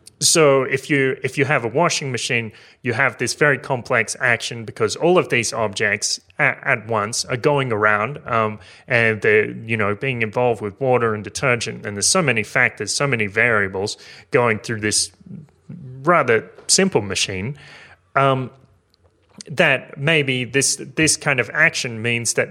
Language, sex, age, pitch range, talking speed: English, male, 30-49, 105-135 Hz, 165 wpm